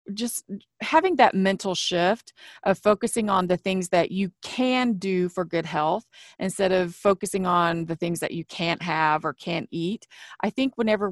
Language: English